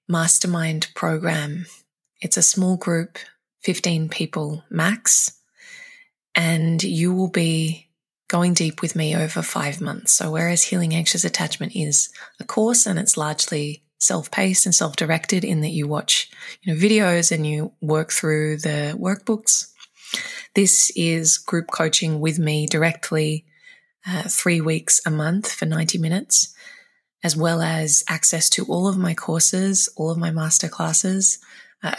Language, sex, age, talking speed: English, female, 20-39, 140 wpm